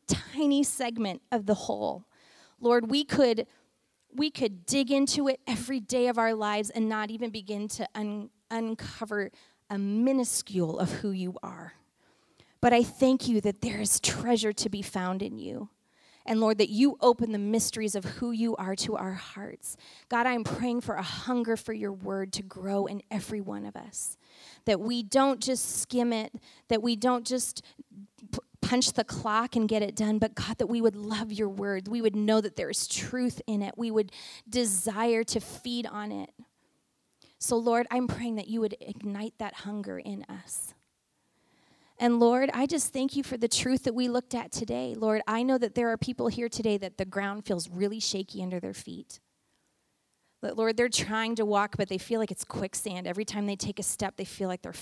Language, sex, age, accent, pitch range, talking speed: English, female, 30-49, American, 200-240 Hz, 200 wpm